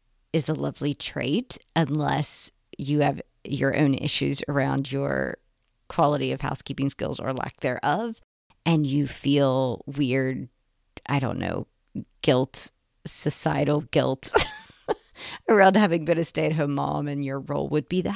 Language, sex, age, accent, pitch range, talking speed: English, female, 40-59, American, 140-185 Hz, 135 wpm